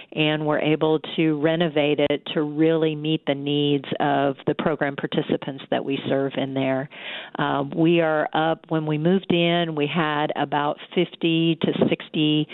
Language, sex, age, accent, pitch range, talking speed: English, female, 50-69, American, 145-165 Hz, 165 wpm